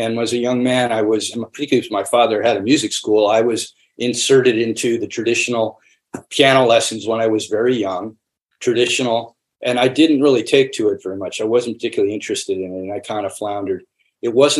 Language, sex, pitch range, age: English, male, 115-135 Hz, 50-69